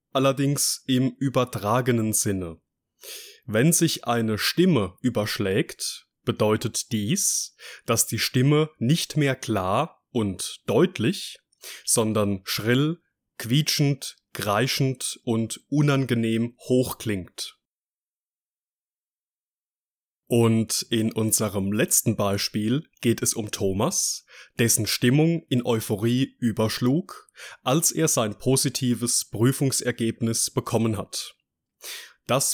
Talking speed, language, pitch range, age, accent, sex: 90 wpm, German, 110-140 Hz, 20-39, German, male